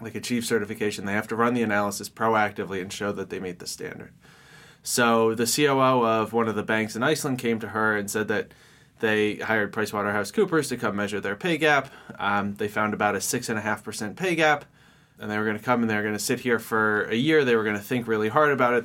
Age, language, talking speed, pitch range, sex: 20-39, English, 240 wpm, 105-120 Hz, male